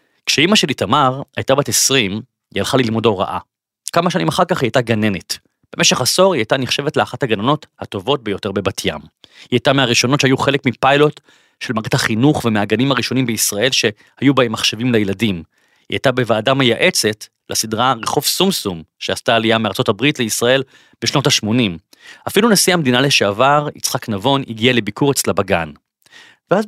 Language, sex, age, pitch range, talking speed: Hebrew, male, 30-49, 115-150 Hz, 155 wpm